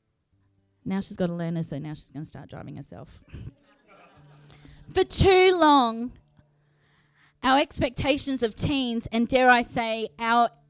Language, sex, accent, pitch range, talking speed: English, female, Australian, 145-220 Hz, 140 wpm